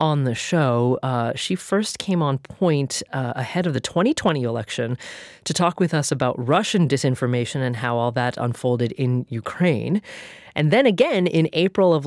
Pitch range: 130-175 Hz